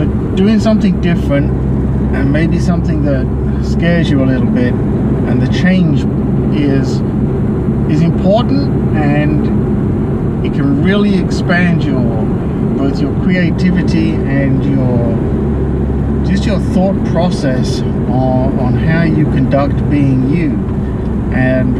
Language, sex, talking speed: English, male, 115 wpm